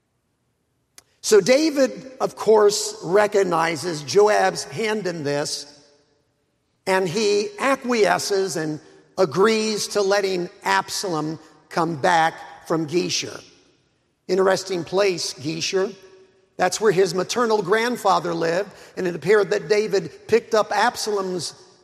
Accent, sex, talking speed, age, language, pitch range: American, male, 105 wpm, 50-69, English, 170-210 Hz